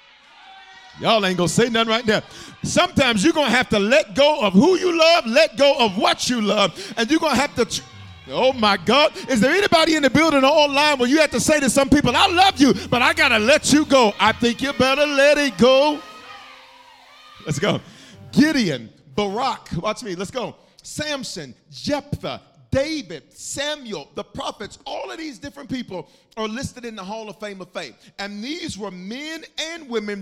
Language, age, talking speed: English, 40-59, 205 wpm